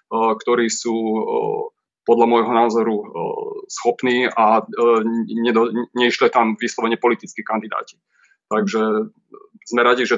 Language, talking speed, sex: Slovak, 95 wpm, male